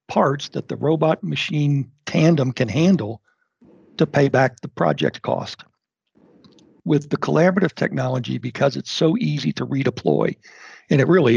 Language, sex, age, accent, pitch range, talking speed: English, male, 60-79, American, 130-155 Hz, 140 wpm